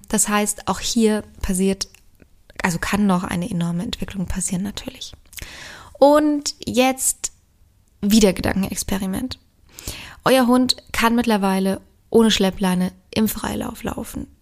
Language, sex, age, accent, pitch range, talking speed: German, female, 20-39, German, 185-220 Hz, 110 wpm